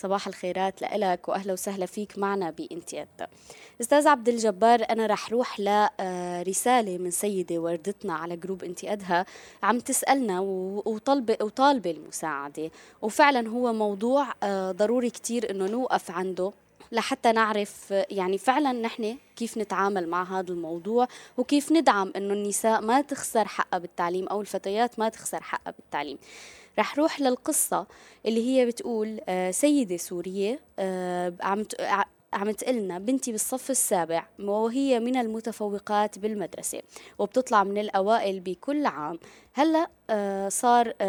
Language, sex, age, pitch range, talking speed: Arabic, female, 20-39, 190-235 Hz, 125 wpm